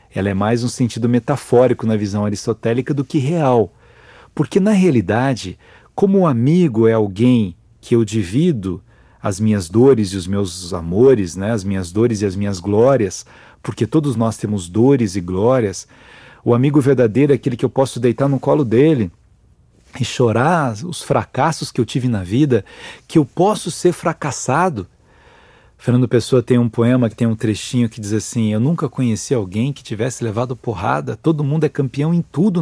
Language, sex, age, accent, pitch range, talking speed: Portuguese, male, 40-59, Brazilian, 115-160 Hz, 180 wpm